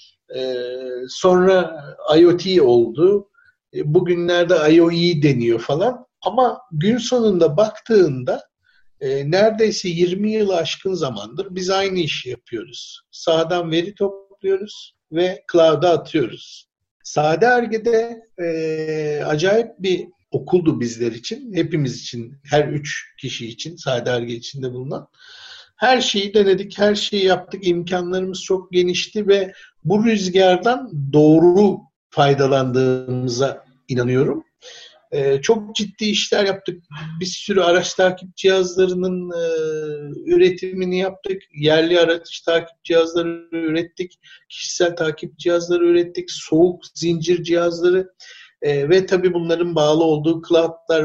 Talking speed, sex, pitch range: 105 wpm, male, 160-200 Hz